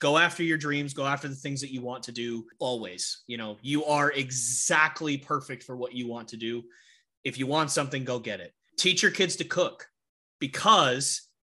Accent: American